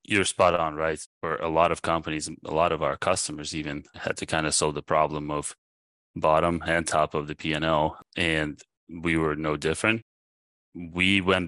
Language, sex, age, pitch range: English, male, 20-39, 75-85 Hz